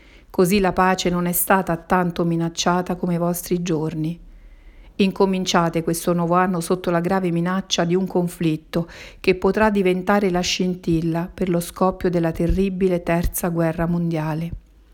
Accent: native